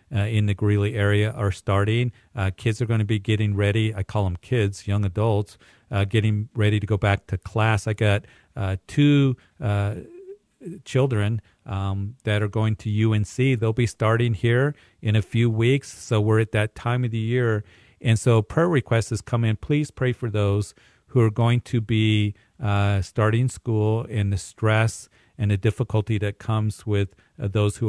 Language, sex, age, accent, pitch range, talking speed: English, male, 40-59, American, 100-115 Hz, 185 wpm